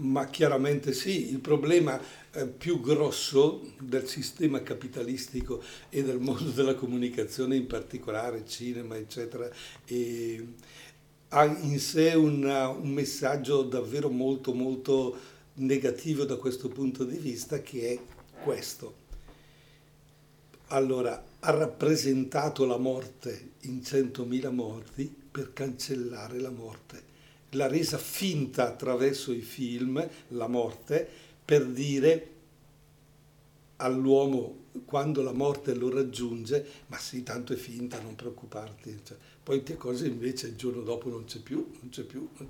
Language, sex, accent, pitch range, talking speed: Italian, male, native, 125-145 Hz, 120 wpm